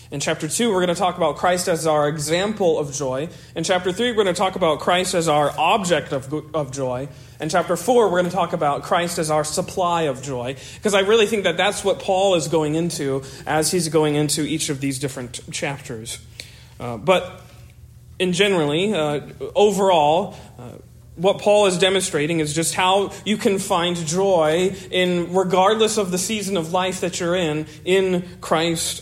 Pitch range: 145-185 Hz